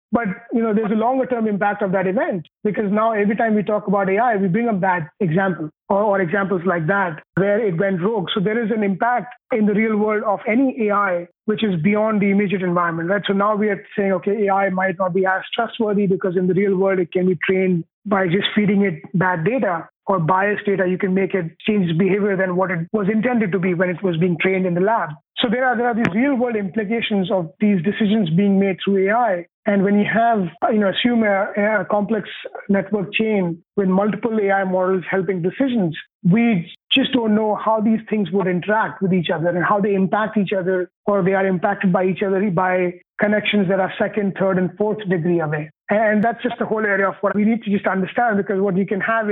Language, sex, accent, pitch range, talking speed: English, male, Indian, 190-215 Hz, 230 wpm